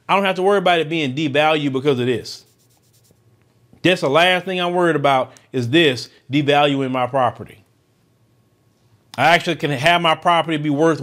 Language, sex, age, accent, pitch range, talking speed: English, male, 40-59, American, 130-185 Hz, 175 wpm